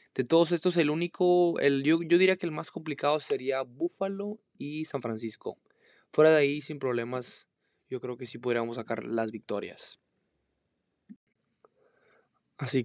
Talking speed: 150 wpm